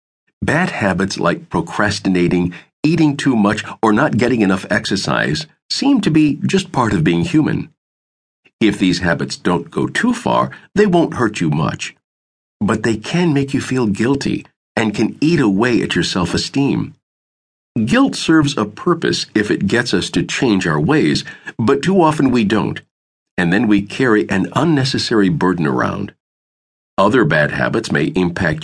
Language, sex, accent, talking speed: English, male, American, 160 wpm